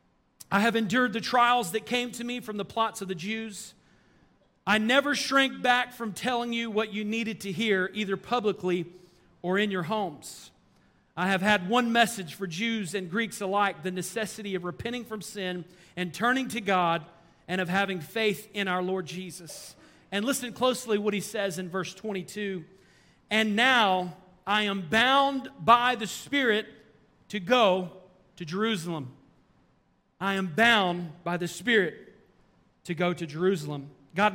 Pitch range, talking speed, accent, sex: 175-215 Hz, 160 wpm, American, male